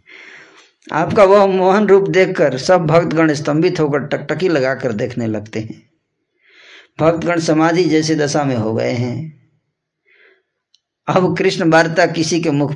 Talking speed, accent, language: 130 wpm, native, Hindi